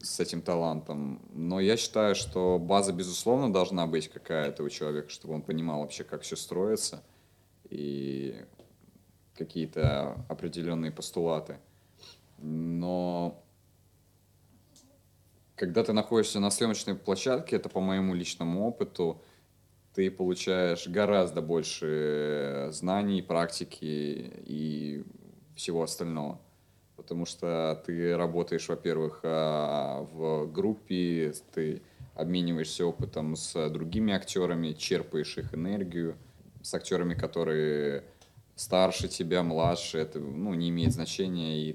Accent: native